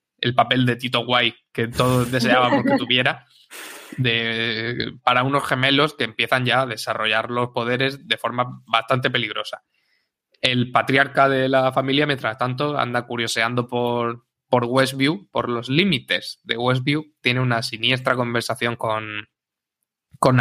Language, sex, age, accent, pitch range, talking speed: Spanish, male, 20-39, Spanish, 115-135 Hz, 140 wpm